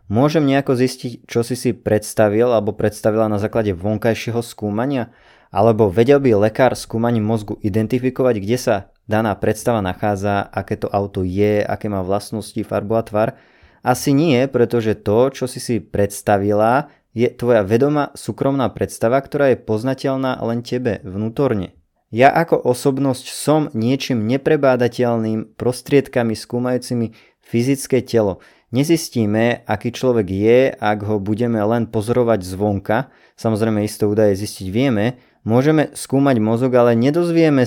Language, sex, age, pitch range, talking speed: Slovak, male, 20-39, 110-130 Hz, 135 wpm